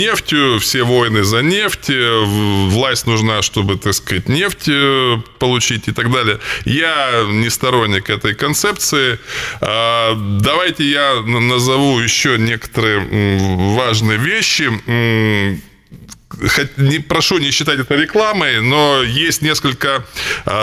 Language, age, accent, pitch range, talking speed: Russian, 20-39, native, 105-130 Hz, 110 wpm